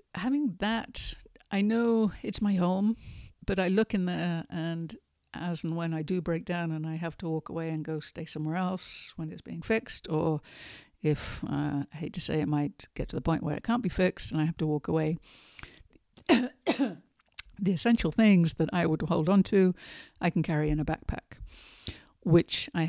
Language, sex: English, female